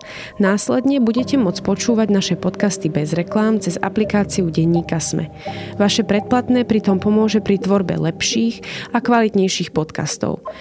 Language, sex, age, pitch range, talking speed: Slovak, female, 30-49, 175-220 Hz, 125 wpm